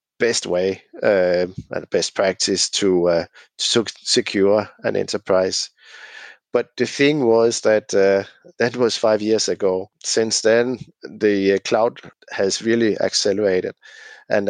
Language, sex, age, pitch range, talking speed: English, male, 50-69, 100-115 Hz, 130 wpm